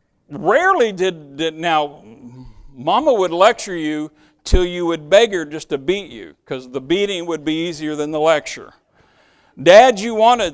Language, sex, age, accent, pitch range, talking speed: English, male, 50-69, American, 145-185 Hz, 165 wpm